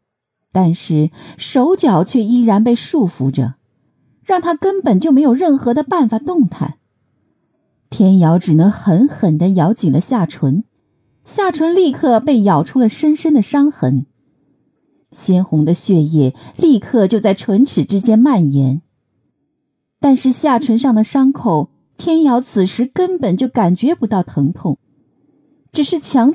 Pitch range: 160-260 Hz